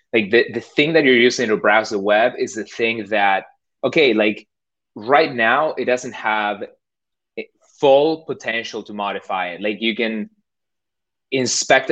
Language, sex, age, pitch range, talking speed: English, male, 20-39, 105-120 Hz, 155 wpm